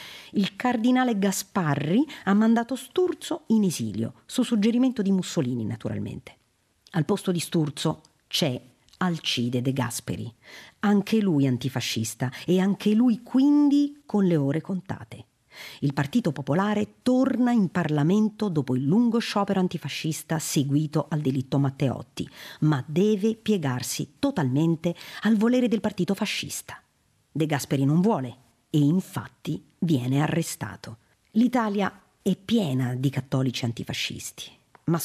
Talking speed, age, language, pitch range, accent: 120 wpm, 50-69, Italian, 140-215 Hz, native